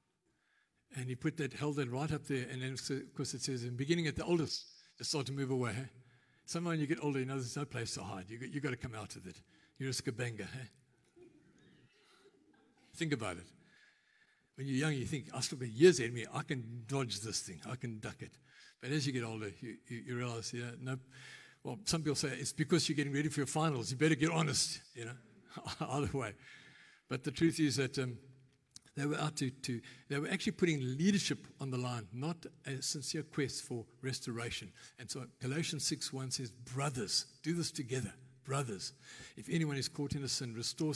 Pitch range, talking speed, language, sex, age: 125-155 Hz, 220 wpm, English, male, 60-79